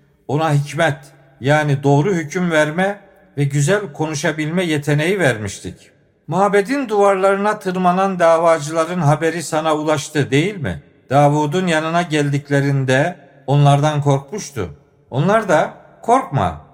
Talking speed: 100 wpm